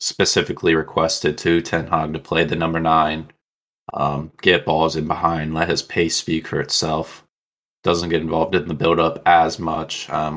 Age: 20-39